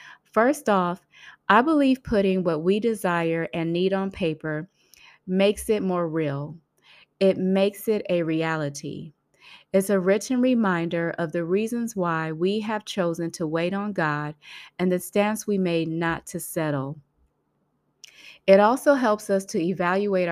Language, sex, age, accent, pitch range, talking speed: English, female, 30-49, American, 165-200 Hz, 150 wpm